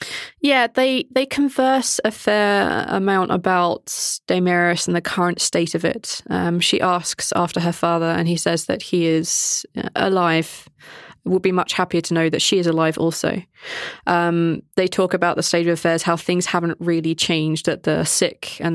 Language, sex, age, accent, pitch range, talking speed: English, female, 20-39, British, 160-190 Hz, 180 wpm